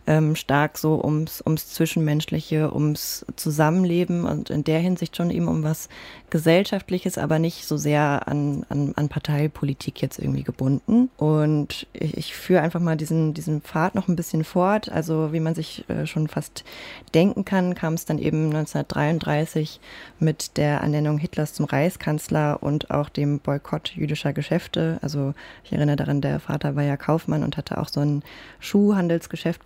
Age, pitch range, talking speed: 20-39, 145-165 Hz, 160 wpm